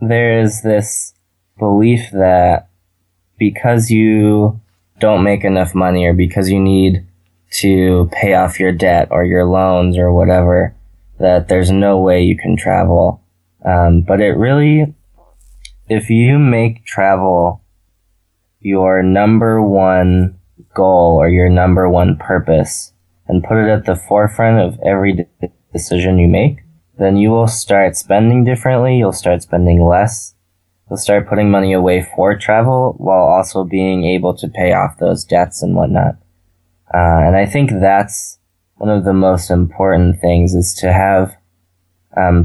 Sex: male